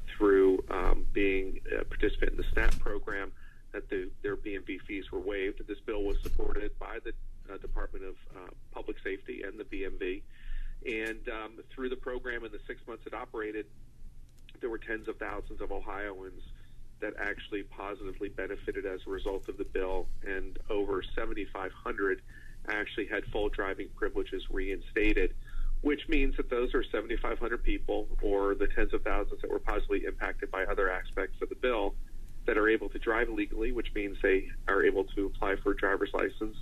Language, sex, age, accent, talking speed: English, male, 40-59, American, 175 wpm